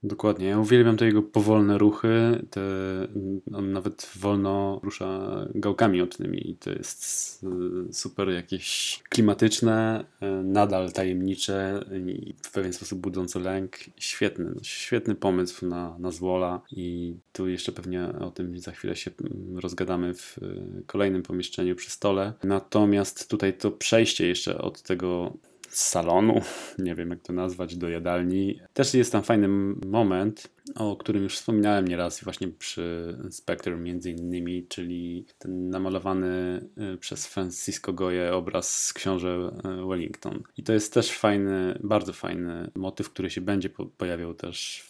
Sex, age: male, 20-39